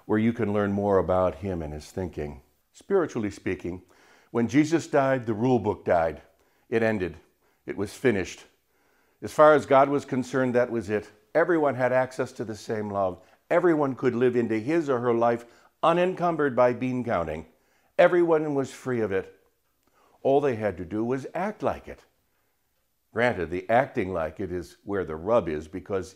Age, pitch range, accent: 60-79, 105-145 Hz, American